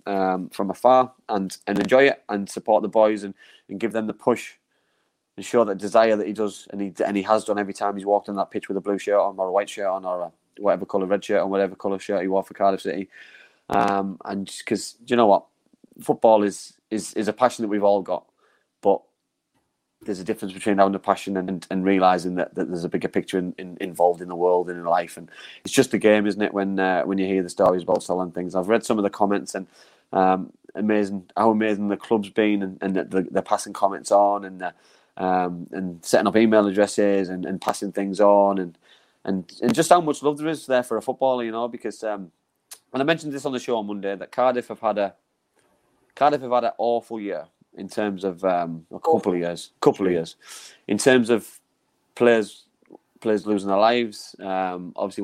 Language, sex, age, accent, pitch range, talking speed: English, male, 20-39, British, 95-110 Hz, 230 wpm